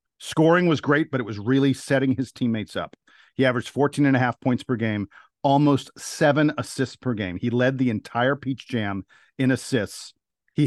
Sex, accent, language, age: male, American, English, 50-69